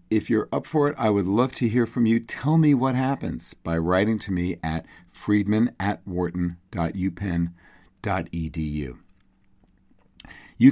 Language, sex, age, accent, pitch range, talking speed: English, male, 40-59, American, 85-105 Hz, 135 wpm